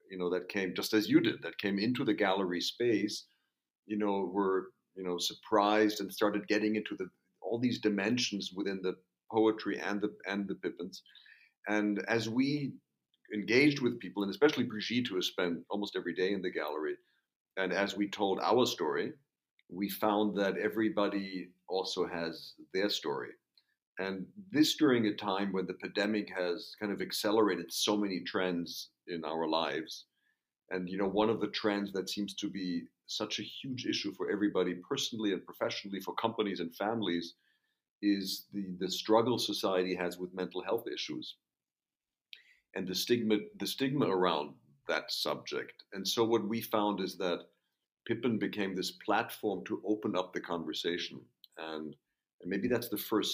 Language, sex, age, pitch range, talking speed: English, male, 50-69, 95-115 Hz, 170 wpm